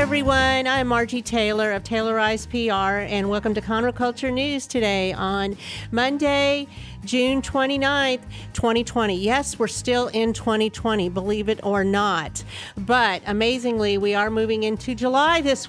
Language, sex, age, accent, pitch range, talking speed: English, female, 50-69, American, 220-255 Hz, 140 wpm